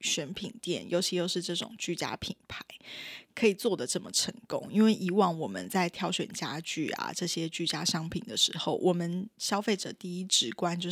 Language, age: Chinese, 10-29